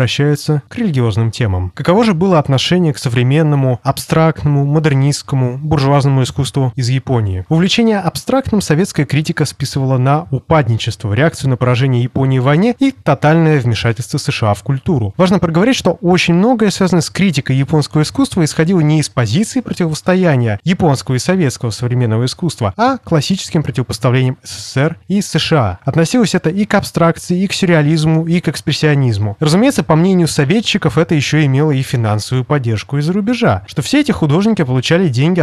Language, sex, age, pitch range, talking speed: Russian, male, 20-39, 130-180 Hz, 150 wpm